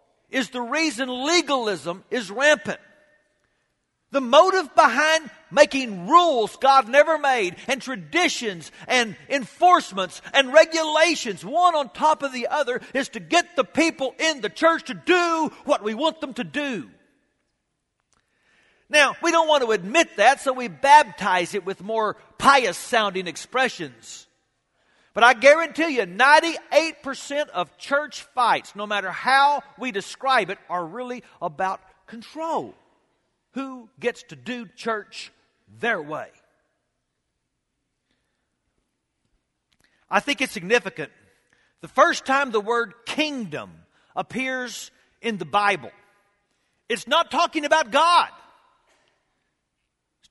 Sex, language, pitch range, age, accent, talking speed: male, English, 210-300 Hz, 50-69, American, 125 wpm